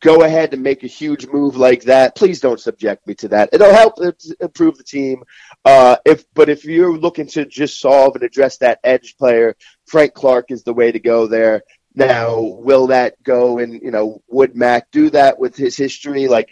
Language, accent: English, American